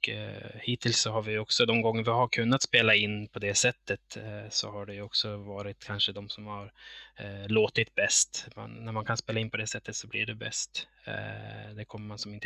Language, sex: Swedish, male